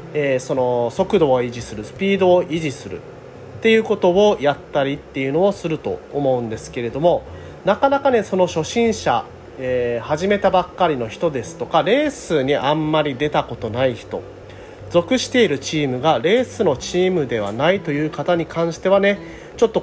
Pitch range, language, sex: 130-200 Hz, Japanese, male